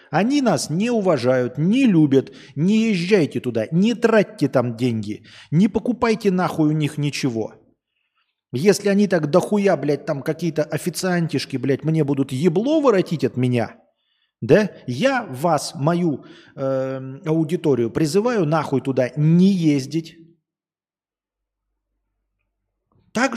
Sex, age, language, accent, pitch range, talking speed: male, 40-59, Russian, native, 135-205 Hz, 120 wpm